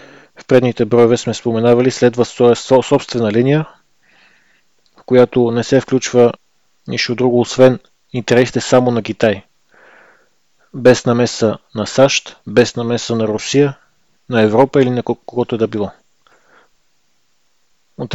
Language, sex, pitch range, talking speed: Bulgarian, male, 115-130 Hz, 120 wpm